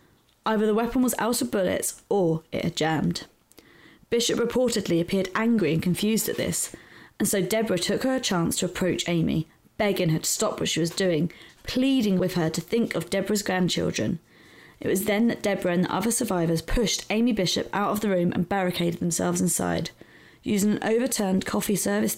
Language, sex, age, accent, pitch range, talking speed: English, female, 20-39, British, 170-220 Hz, 190 wpm